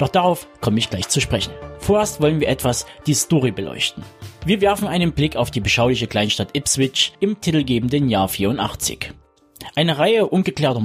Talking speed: 165 wpm